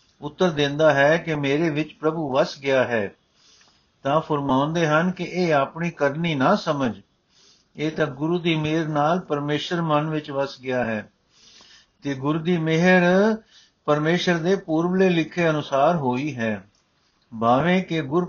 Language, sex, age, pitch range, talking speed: Punjabi, male, 60-79, 145-200 Hz, 150 wpm